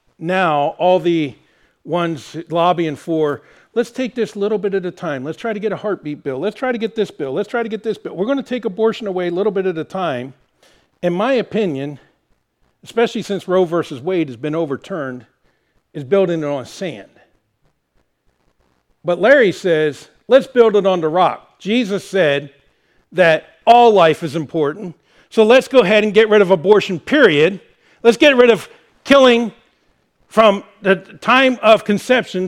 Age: 50-69